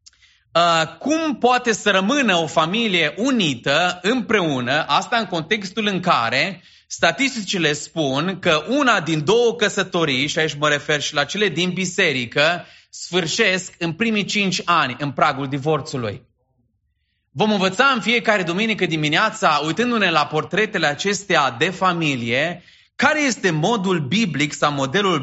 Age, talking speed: 30-49, 130 wpm